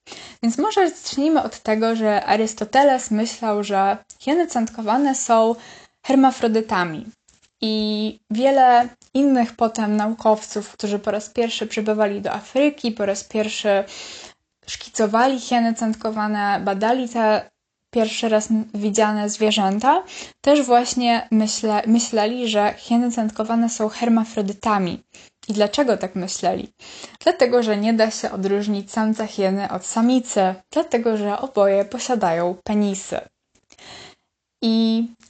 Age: 10-29